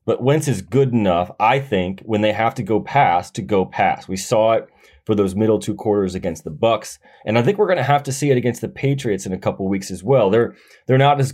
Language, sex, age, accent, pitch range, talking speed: English, male, 30-49, American, 95-120 Hz, 265 wpm